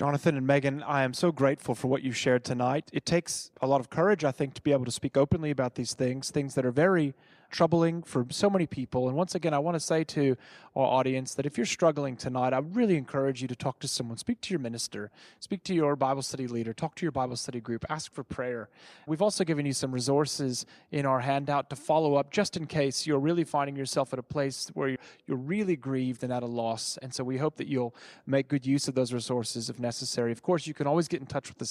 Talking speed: 255 wpm